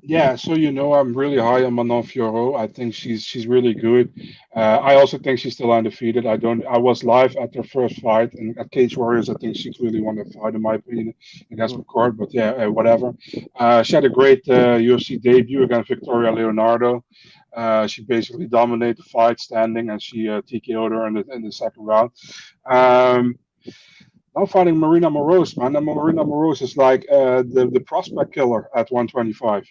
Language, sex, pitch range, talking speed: English, male, 115-145 Hz, 200 wpm